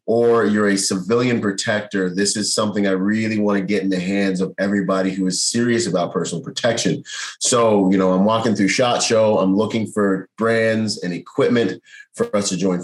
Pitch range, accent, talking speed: 95-115 Hz, American, 195 wpm